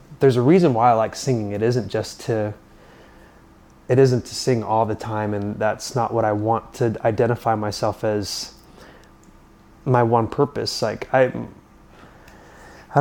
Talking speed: 155 wpm